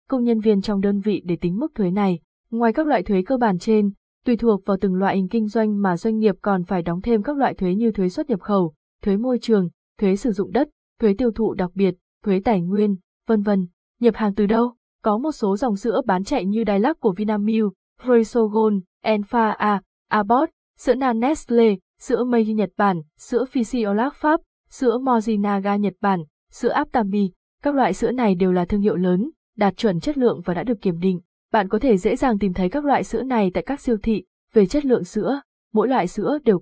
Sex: female